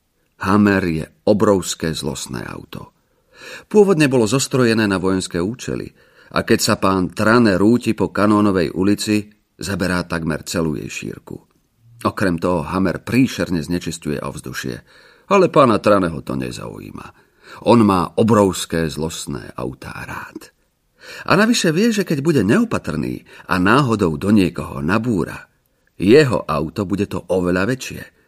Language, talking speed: Slovak, 125 wpm